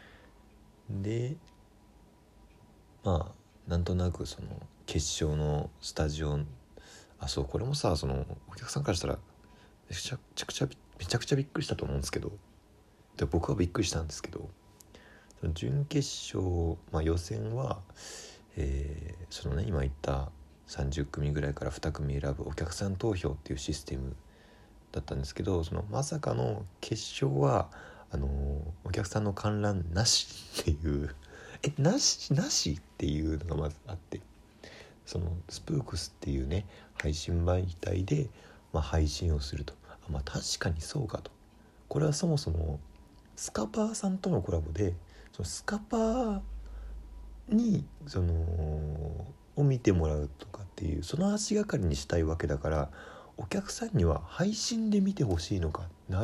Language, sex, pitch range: Japanese, male, 75-110 Hz